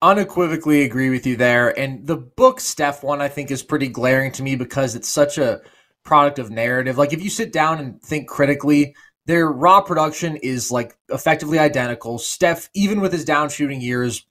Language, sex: English, male